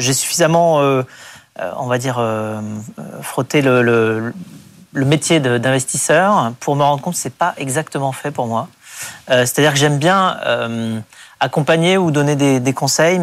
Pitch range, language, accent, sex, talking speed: 120-150 Hz, French, French, male, 170 wpm